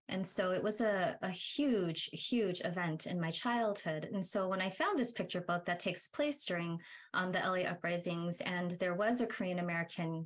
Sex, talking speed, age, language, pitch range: female, 195 wpm, 20-39, English, 180-240 Hz